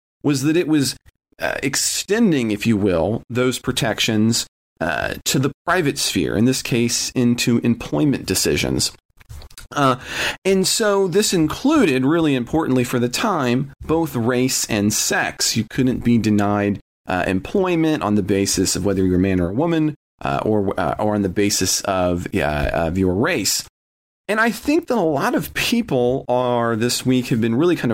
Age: 40-59